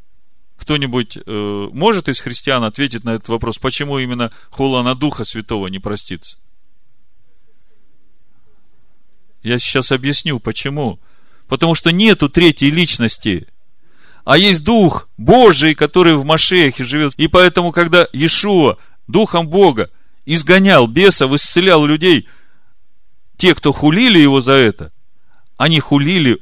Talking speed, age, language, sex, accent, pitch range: 115 wpm, 40-59, Russian, male, native, 115-160 Hz